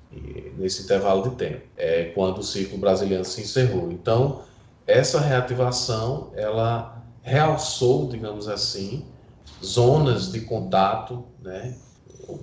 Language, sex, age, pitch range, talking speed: Portuguese, male, 20-39, 95-125 Hz, 110 wpm